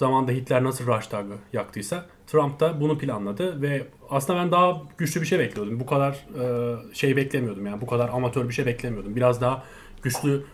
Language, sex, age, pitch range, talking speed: Turkish, male, 30-49, 125-150 Hz, 180 wpm